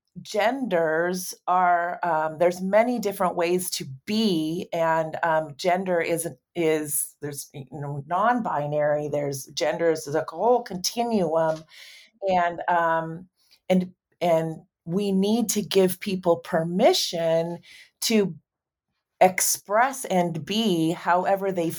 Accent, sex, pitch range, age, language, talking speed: American, female, 160-205 Hz, 40-59, English, 110 wpm